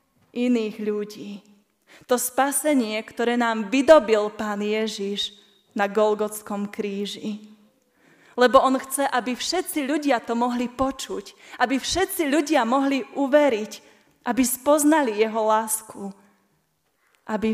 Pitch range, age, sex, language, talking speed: 215-260 Hz, 20-39, female, Slovak, 105 wpm